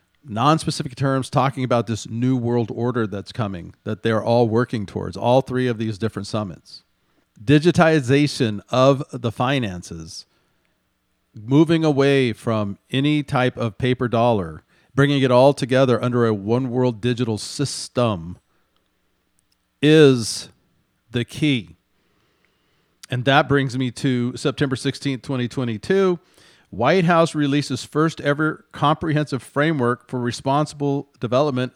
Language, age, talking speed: English, 40-59, 125 wpm